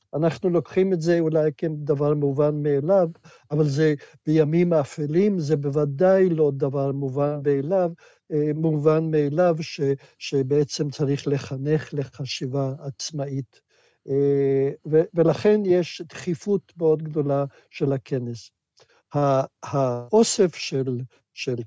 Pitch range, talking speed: 135-160 Hz, 100 wpm